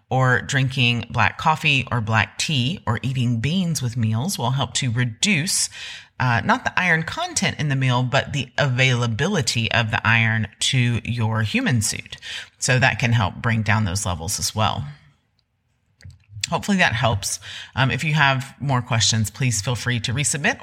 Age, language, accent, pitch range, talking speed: 30-49, English, American, 115-140 Hz, 170 wpm